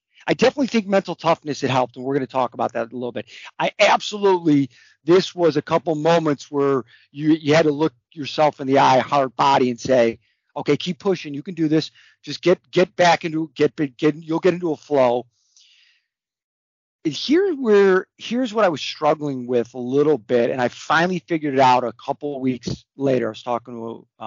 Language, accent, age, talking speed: English, American, 40-59, 210 wpm